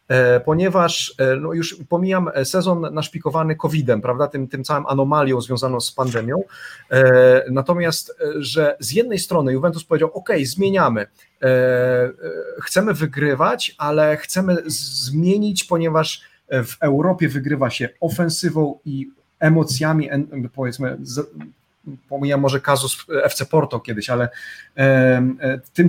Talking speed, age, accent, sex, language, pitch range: 105 wpm, 30-49, native, male, Polish, 130-170 Hz